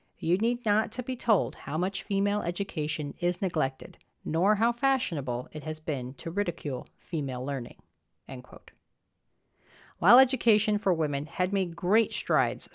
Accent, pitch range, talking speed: American, 145-200 Hz, 150 wpm